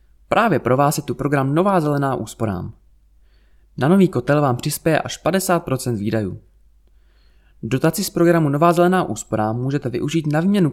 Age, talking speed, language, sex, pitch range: 20-39, 150 wpm, Czech, male, 110-165 Hz